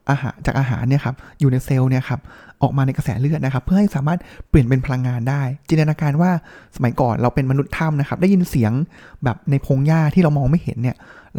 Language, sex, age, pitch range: Thai, male, 20-39, 130-165 Hz